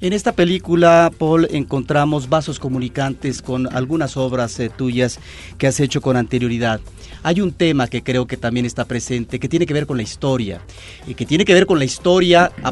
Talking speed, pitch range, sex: 195 wpm, 120-160 Hz, male